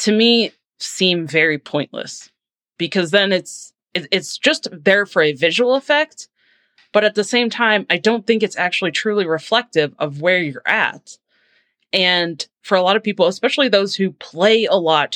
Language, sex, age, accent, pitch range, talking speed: English, female, 20-39, American, 160-220 Hz, 175 wpm